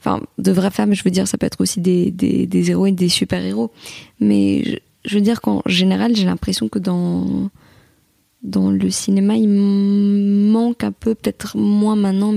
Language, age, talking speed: French, 20-39, 185 wpm